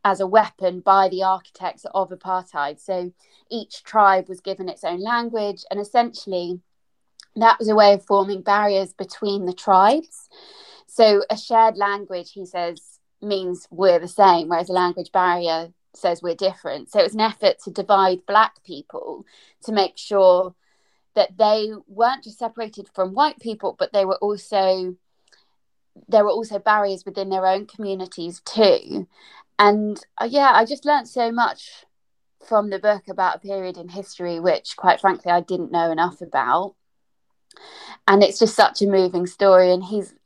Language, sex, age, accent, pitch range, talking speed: English, female, 20-39, British, 180-210 Hz, 165 wpm